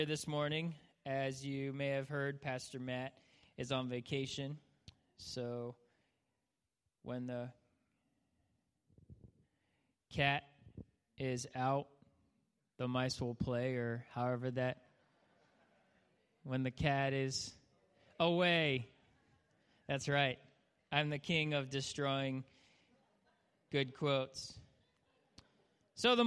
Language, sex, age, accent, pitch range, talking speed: English, male, 20-39, American, 125-145 Hz, 95 wpm